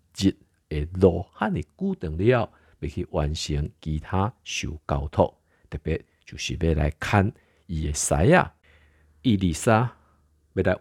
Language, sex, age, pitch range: Chinese, male, 50-69, 75-95 Hz